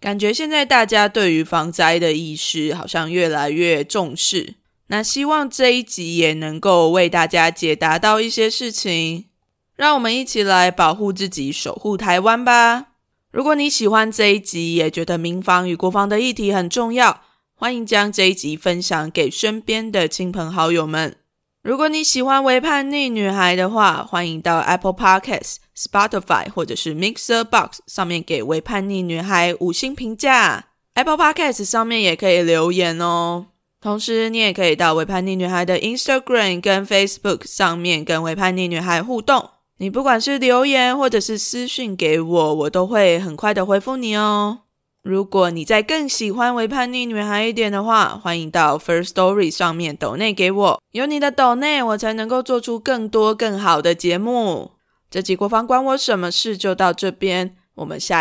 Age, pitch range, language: 20-39, 175-235 Hz, Chinese